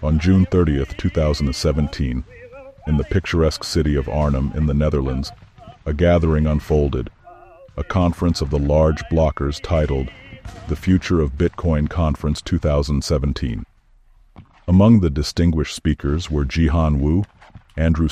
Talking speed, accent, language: 125 wpm, American, English